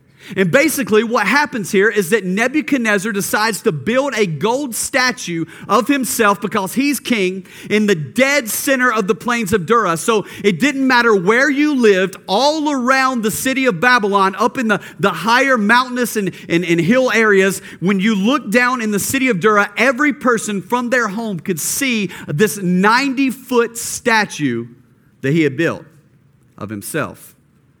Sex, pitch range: male, 185-245 Hz